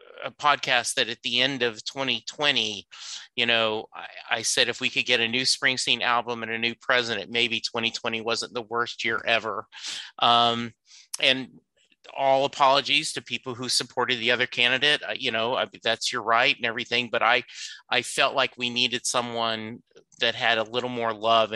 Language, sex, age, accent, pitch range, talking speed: English, male, 30-49, American, 115-135 Hz, 185 wpm